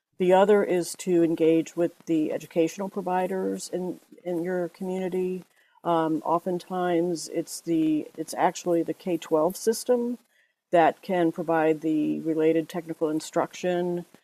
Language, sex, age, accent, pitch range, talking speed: English, female, 50-69, American, 160-180 Hz, 120 wpm